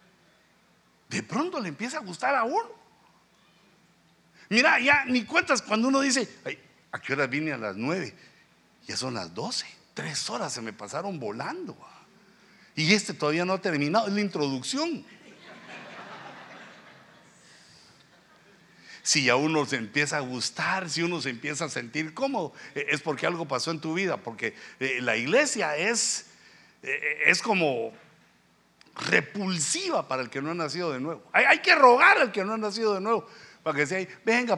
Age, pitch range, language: 60-79, 150-230 Hz, Spanish